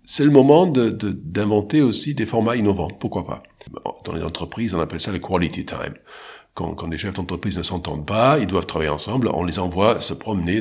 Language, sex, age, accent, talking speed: French, male, 50-69, French, 220 wpm